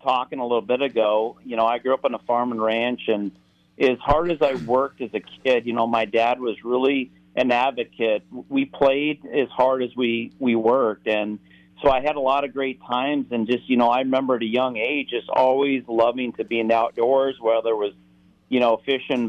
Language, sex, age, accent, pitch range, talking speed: English, male, 40-59, American, 110-130 Hz, 225 wpm